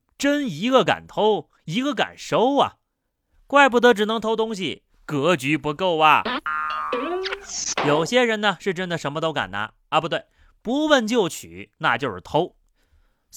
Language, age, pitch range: Chinese, 30-49, 140-225 Hz